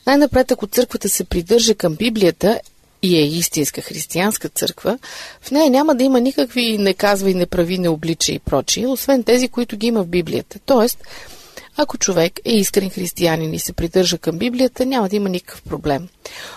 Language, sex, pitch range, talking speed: Bulgarian, female, 175-240 Hz, 180 wpm